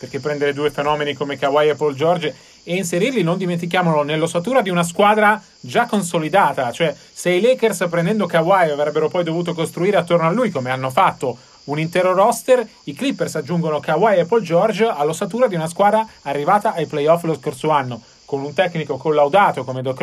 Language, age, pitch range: Italian, 40-59, 155-195 Hz